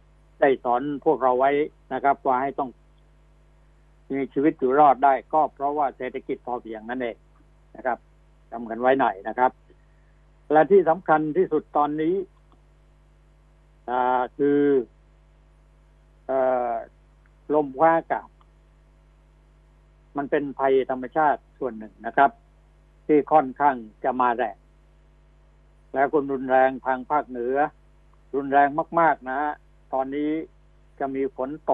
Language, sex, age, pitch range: Thai, male, 60-79, 125-150 Hz